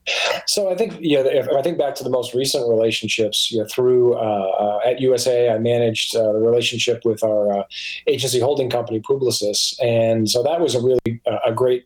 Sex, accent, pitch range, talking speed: male, American, 110-130 Hz, 215 wpm